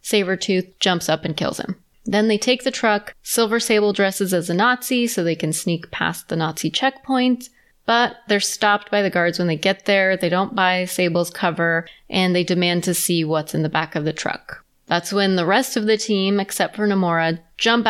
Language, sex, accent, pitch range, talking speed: English, female, American, 175-220 Hz, 210 wpm